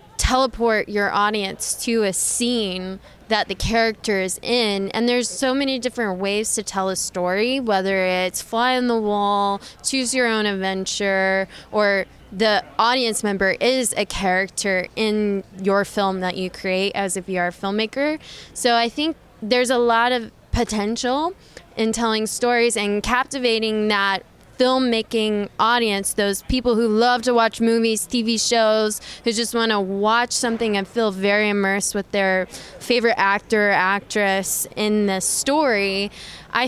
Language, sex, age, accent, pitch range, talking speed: English, female, 10-29, American, 195-235 Hz, 150 wpm